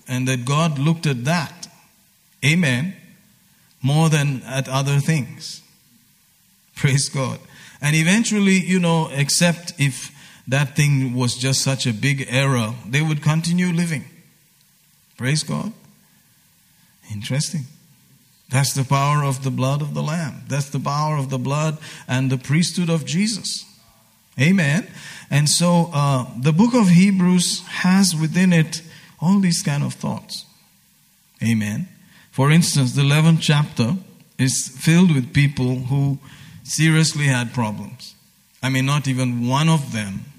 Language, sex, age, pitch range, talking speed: English, male, 50-69, 130-165 Hz, 135 wpm